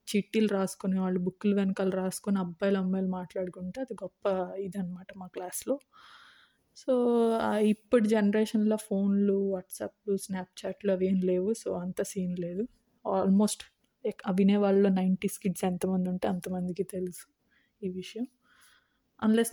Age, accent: 20-39, native